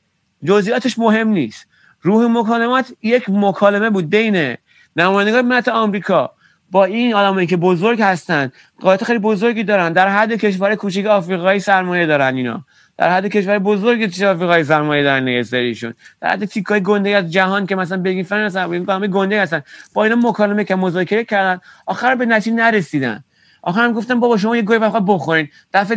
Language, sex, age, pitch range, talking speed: Persian, male, 30-49, 180-225 Hz, 165 wpm